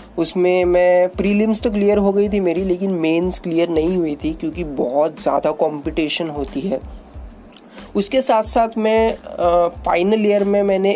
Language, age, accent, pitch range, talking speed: Hindi, 20-39, native, 160-195 Hz, 165 wpm